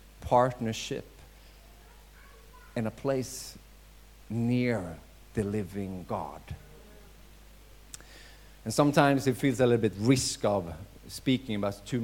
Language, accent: English, Swedish